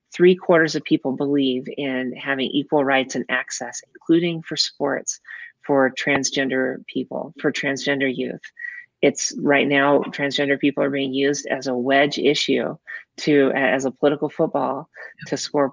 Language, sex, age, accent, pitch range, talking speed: English, female, 30-49, American, 135-160 Hz, 150 wpm